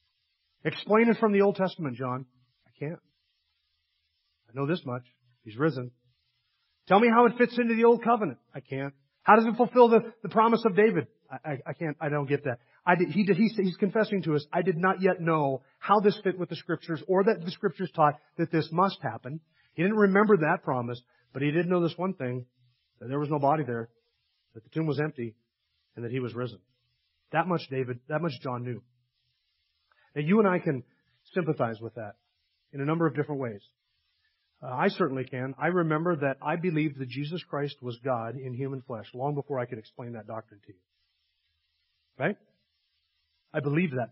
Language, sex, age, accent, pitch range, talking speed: English, male, 40-59, American, 120-170 Hz, 205 wpm